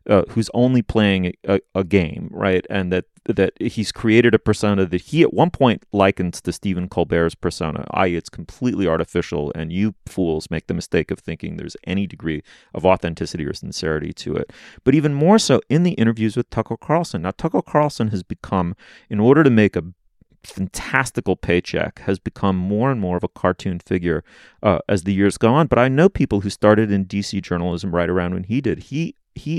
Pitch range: 90-120 Hz